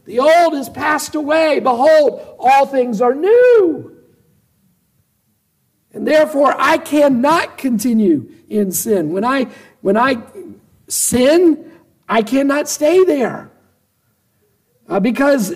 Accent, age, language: American, 50-69, English